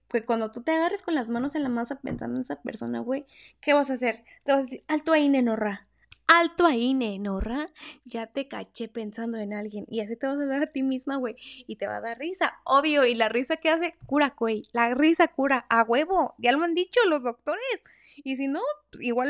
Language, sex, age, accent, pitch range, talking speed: Spanish, female, 10-29, Mexican, 230-290 Hz, 235 wpm